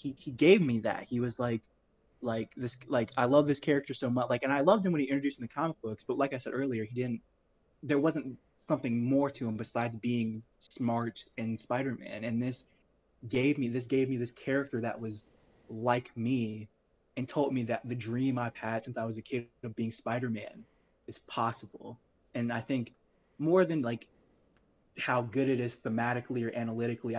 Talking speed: 205 wpm